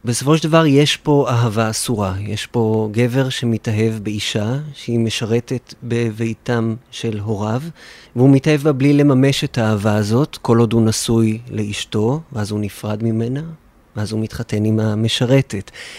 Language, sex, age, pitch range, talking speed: Hebrew, male, 30-49, 115-145 Hz, 145 wpm